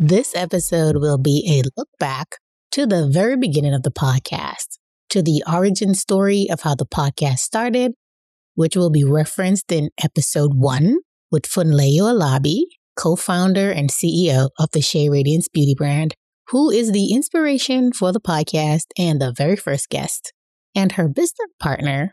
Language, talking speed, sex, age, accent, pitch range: English, 155 wpm, female, 20-39, American, 145-200 Hz